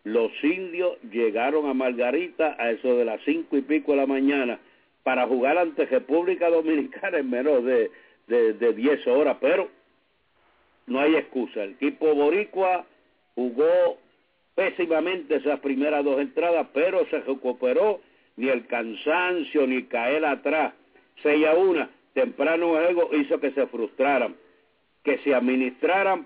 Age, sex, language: 60-79, male, English